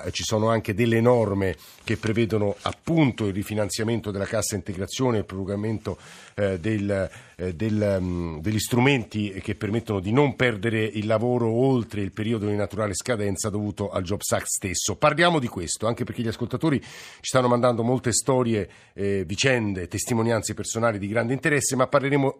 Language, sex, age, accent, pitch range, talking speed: Italian, male, 50-69, native, 105-125 Hz, 160 wpm